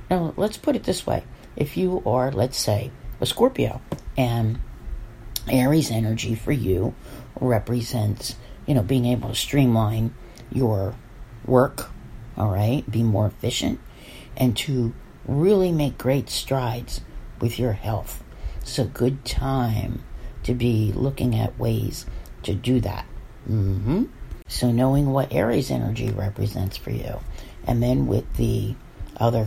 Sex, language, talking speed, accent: female, English, 135 wpm, American